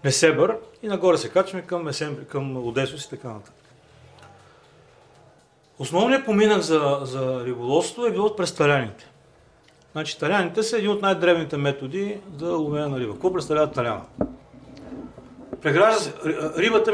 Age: 40-59